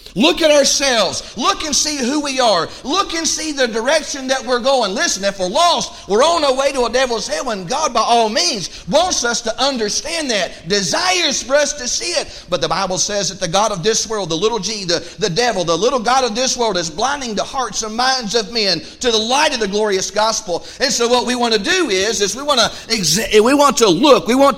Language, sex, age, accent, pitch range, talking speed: English, male, 40-59, American, 150-235 Hz, 245 wpm